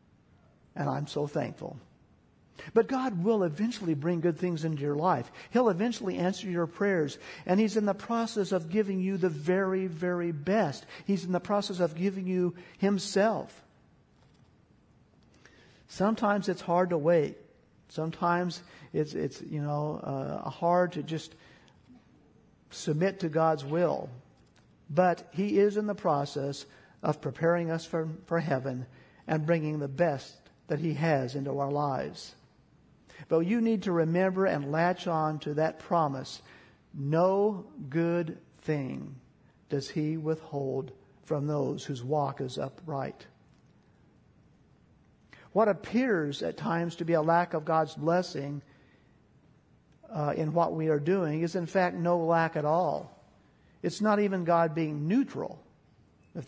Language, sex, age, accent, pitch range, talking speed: English, male, 50-69, American, 150-185 Hz, 140 wpm